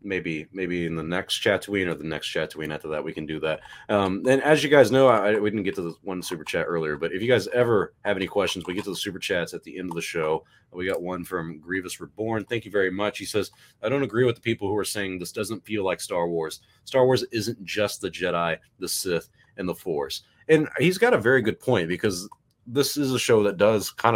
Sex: male